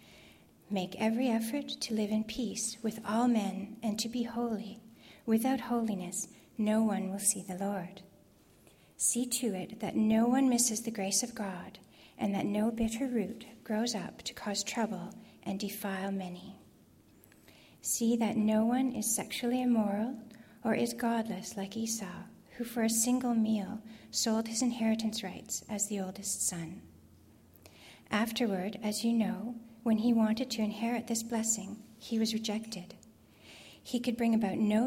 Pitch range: 200-230 Hz